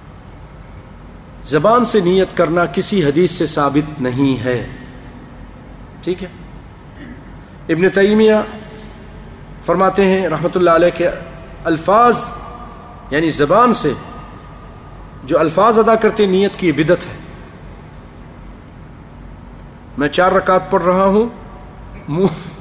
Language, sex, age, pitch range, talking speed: English, male, 40-59, 160-195 Hz, 105 wpm